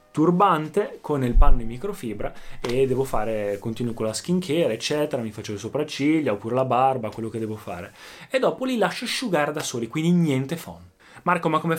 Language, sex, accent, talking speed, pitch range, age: Italian, male, native, 195 wpm, 120-165 Hz, 20-39